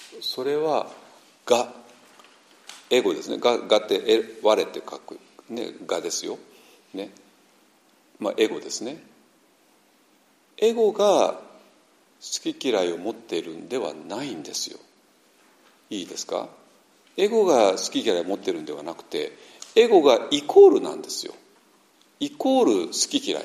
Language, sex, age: Japanese, male, 50-69